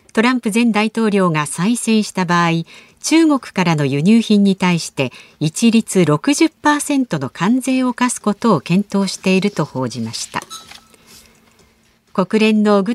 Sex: female